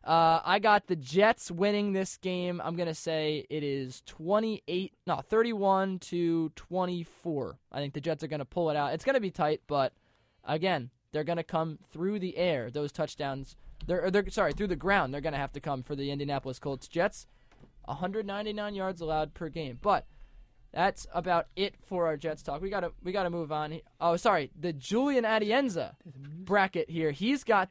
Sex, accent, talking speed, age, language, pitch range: male, American, 185 wpm, 20-39, English, 145-190 Hz